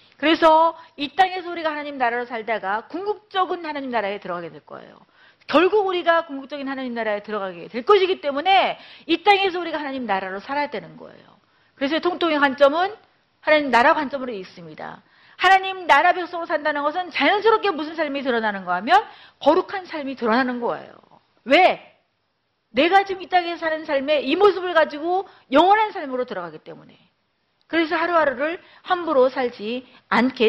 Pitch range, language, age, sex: 235-345 Hz, Korean, 40-59, female